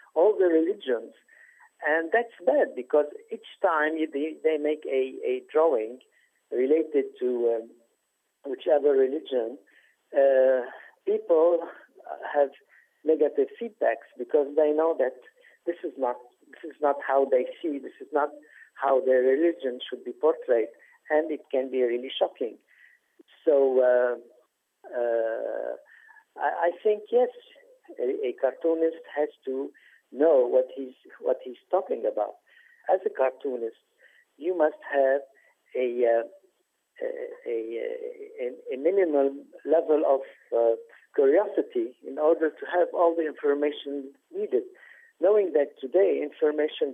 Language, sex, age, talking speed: English, male, 50-69, 125 wpm